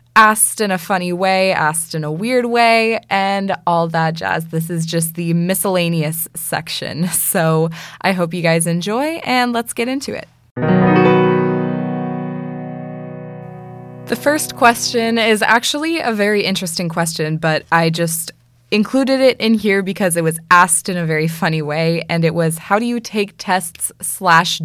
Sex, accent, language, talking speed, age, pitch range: female, American, English, 160 wpm, 20-39, 165-215 Hz